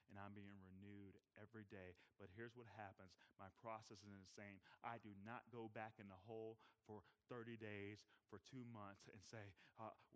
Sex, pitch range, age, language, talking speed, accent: male, 105-125 Hz, 30-49, English, 190 wpm, American